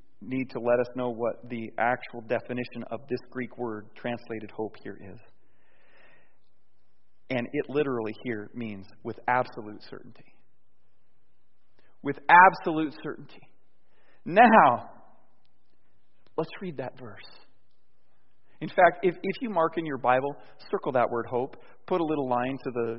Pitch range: 130-220 Hz